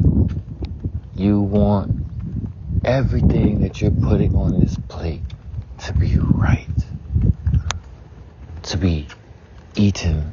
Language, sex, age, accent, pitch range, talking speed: English, male, 60-79, American, 85-105 Hz, 85 wpm